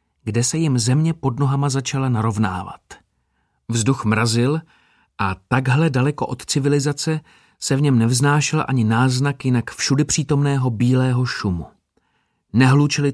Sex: male